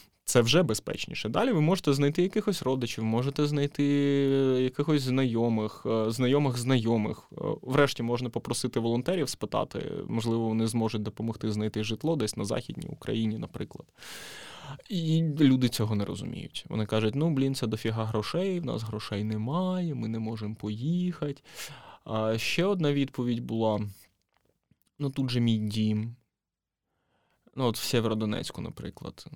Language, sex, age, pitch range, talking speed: Ukrainian, male, 20-39, 110-150 Hz, 130 wpm